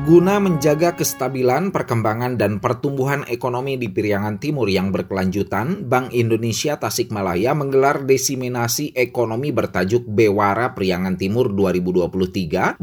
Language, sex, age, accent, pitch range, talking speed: Indonesian, male, 30-49, native, 100-150 Hz, 110 wpm